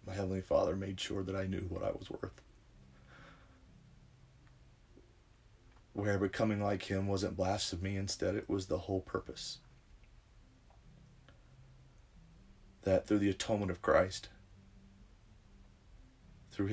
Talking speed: 110 wpm